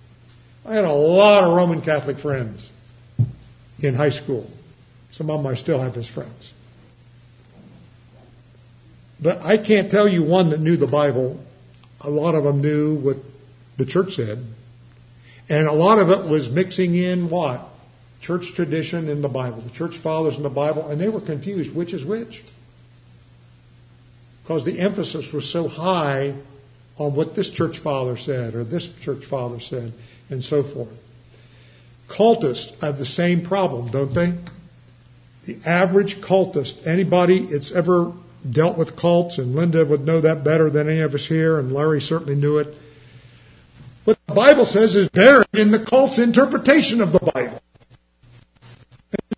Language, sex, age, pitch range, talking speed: English, male, 60-79, 120-180 Hz, 160 wpm